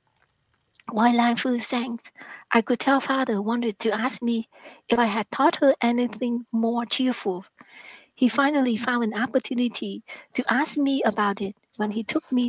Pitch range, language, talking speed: 215-255 Hz, English, 165 wpm